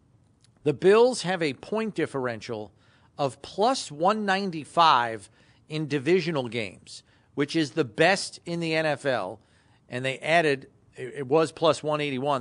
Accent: American